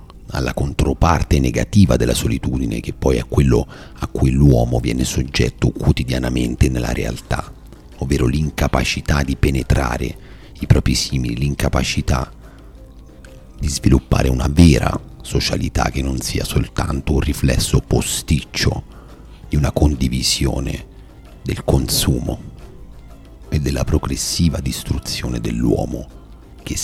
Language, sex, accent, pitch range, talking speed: Italian, male, native, 65-75 Hz, 105 wpm